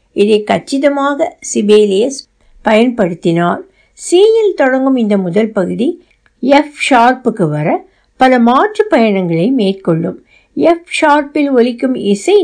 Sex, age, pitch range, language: female, 60-79, 205-295 Hz, Tamil